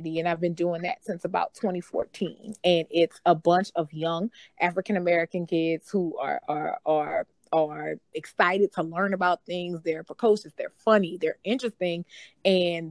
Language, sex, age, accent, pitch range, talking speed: English, female, 20-39, American, 165-195 Hz, 160 wpm